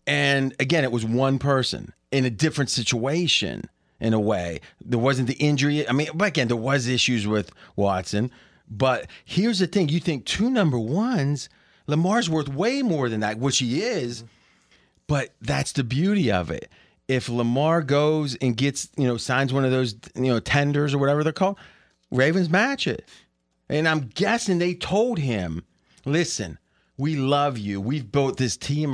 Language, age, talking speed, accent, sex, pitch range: English, 30-49, 175 wpm, American, male, 130-175 Hz